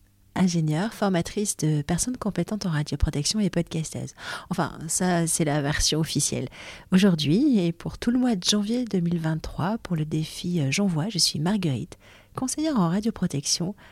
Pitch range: 150-205 Hz